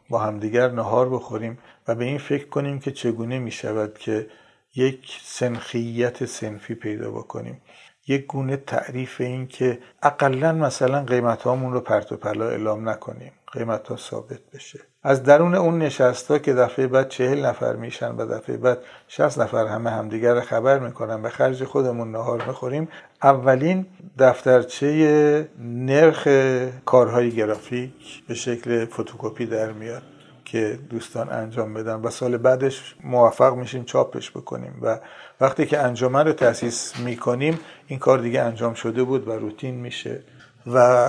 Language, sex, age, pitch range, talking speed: Persian, male, 50-69, 120-145 Hz, 140 wpm